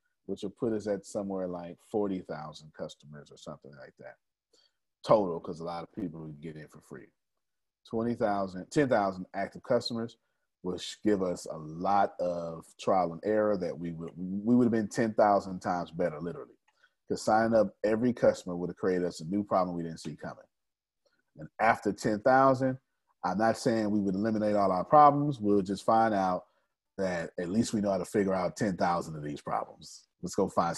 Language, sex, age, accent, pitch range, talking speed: English, male, 30-49, American, 85-110 Hz, 185 wpm